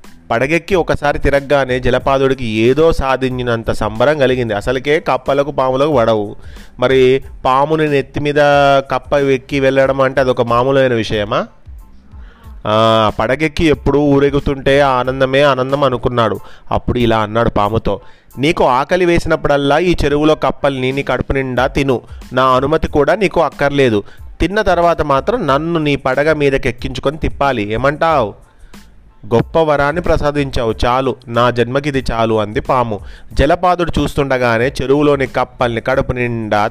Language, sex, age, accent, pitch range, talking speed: Telugu, male, 30-49, native, 115-140 Hz, 120 wpm